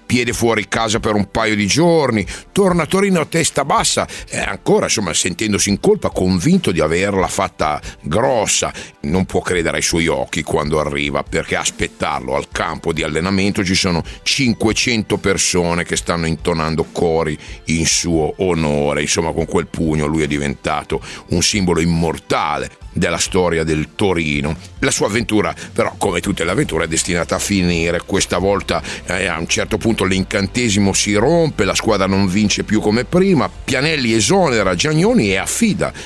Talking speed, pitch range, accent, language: 165 wpm, 85-120 Hz, native, Italian